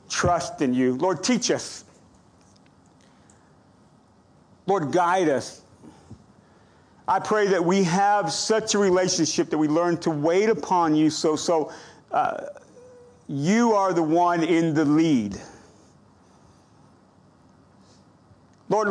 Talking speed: 110 wpm